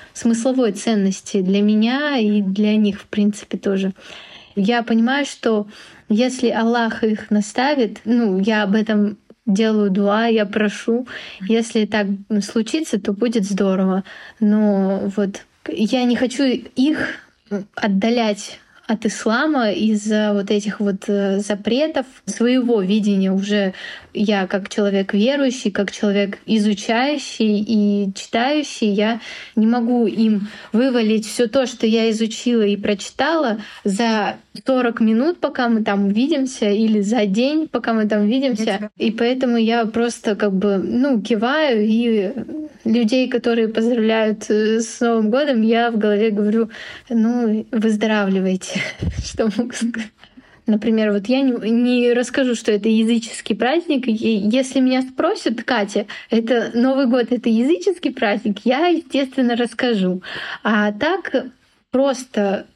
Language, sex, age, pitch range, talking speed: Russian, female, 20-39, 210-245 Hz, 125 wpm